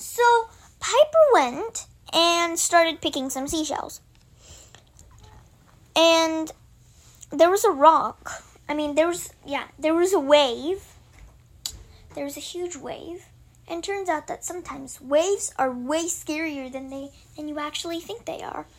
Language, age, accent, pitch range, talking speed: Hindi, 10-29, American, 285-365 Hz, 145 wpm